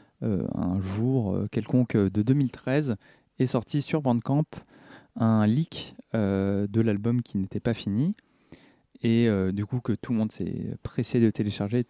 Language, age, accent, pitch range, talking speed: French, 20-39, French, 105-135 Hz, 155 wpm